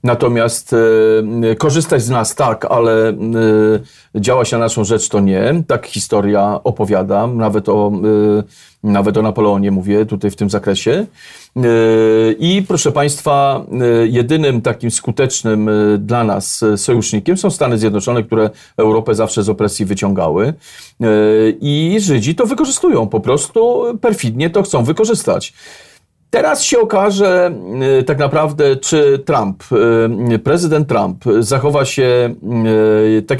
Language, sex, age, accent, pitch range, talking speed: Polish, male, 40-59, native, 110-140 Hz, 115 wpm